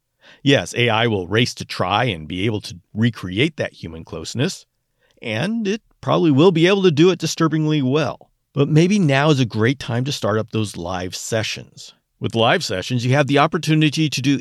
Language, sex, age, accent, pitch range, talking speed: English, male, 50-69, American, 110-150 Hz, 195 wpm